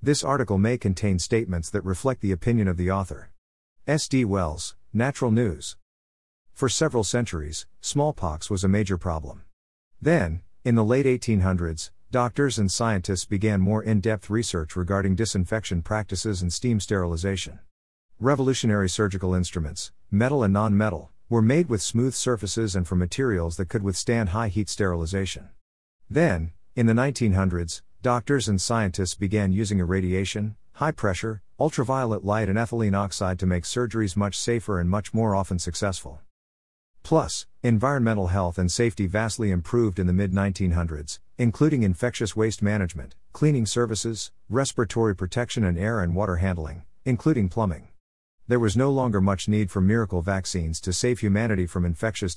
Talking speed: 145 wpm